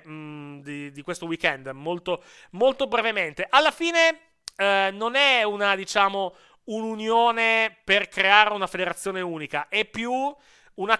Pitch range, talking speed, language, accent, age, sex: 150-200 Hz, 125 wpm, Italian, native, 30-49, male